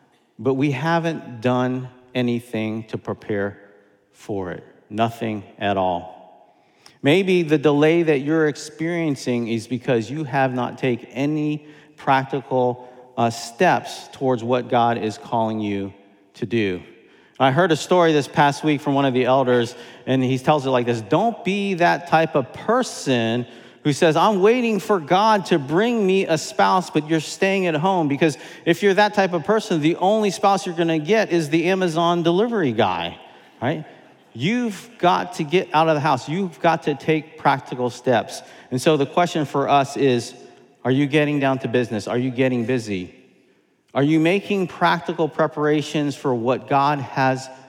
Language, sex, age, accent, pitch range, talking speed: English, male, 40-59, American, 120-170 Hz, 170 wpm